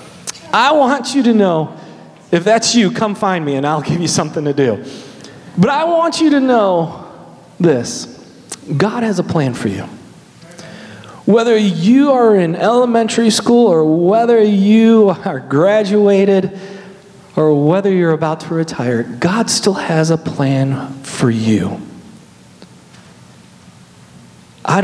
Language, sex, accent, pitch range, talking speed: English, male, American, 160-225 Hz, 135 wpm